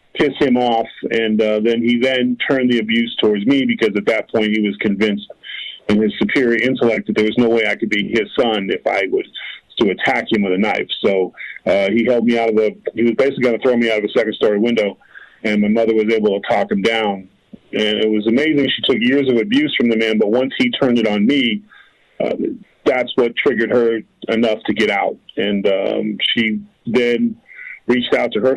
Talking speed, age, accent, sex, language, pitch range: 230 wpm, 40-59, American, male, English, 110-125 Hz